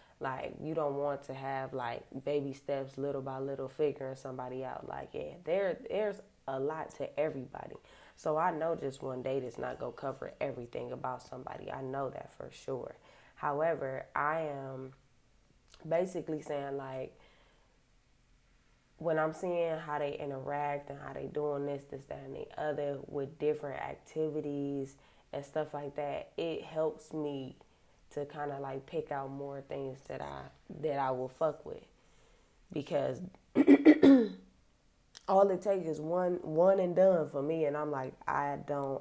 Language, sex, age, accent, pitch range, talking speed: English, female, 10-29, American, 135-160 Hz, 160 wpm